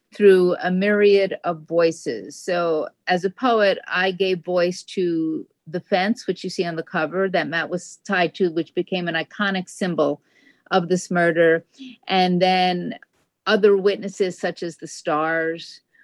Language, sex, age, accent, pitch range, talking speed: English, female, 50-69, American, 170-220 Hz, 155 wpm